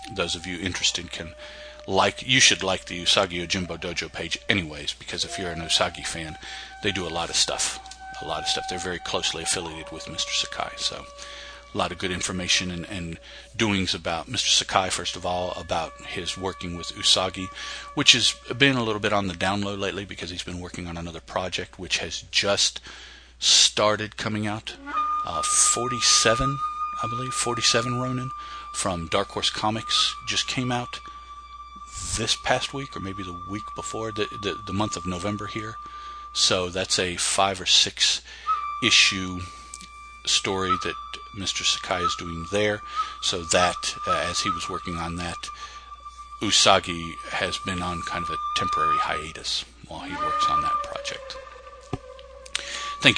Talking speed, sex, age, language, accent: 170 wpm, male, 40-59, English, American